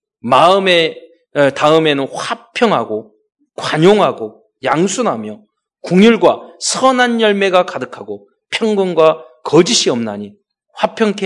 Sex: male